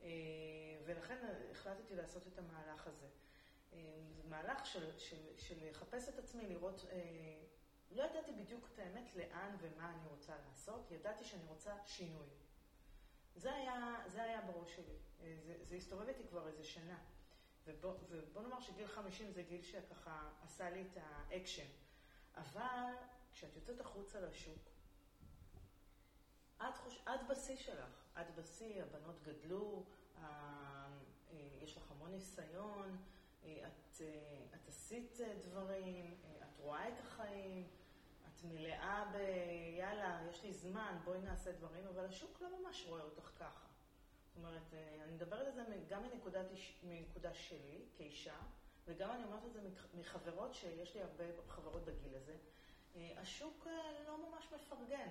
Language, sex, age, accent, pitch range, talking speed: Hebrew, female, 30-49, native, 160-210 Hz, 130 wpm